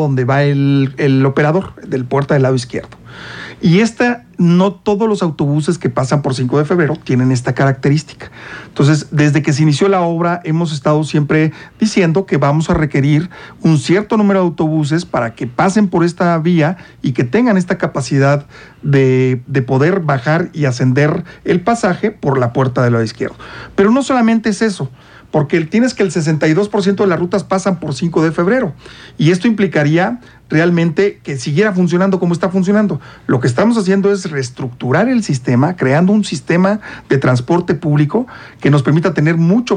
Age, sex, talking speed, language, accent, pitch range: 50-69, male, 175 wpm, Spanish, Mexican, 140-190 Hz